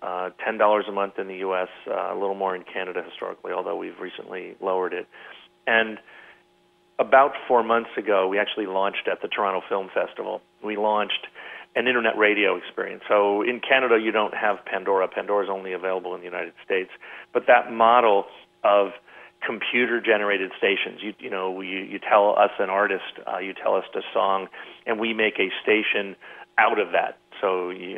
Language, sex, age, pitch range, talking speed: English, male, 40-59, 95-120 Hz, 175 wpm